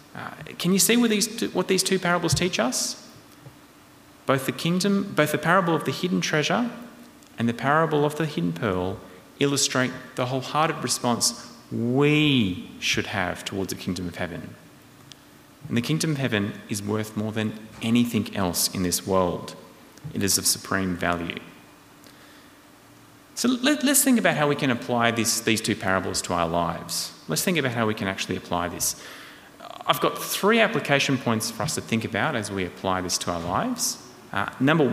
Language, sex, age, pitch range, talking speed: English, male, 30-49, 100-150 Hz, 180 wpm